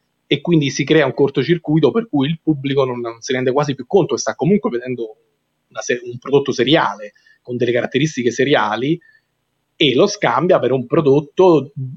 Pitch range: 125-170 Hz